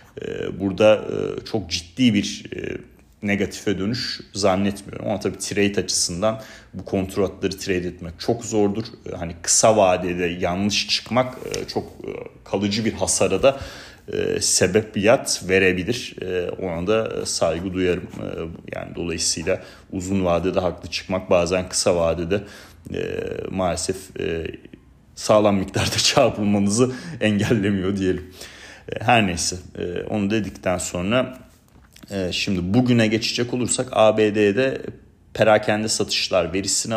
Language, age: Turkish, 40-59